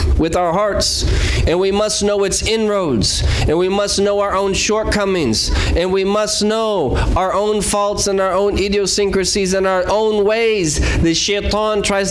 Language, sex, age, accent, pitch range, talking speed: English, male, 20-39, American, 170-200 Hz, 170 wpm